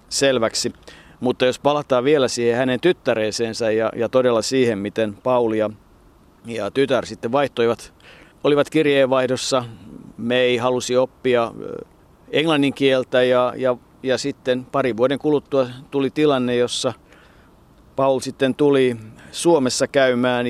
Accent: native